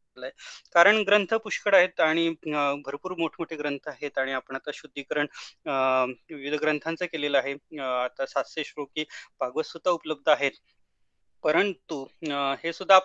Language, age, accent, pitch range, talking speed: Marathi, 20-39, native, 145-180 Hz, 60 wpm